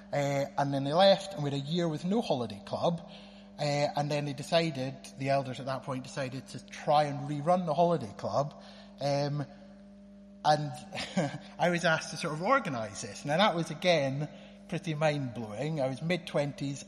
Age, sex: 30-49, male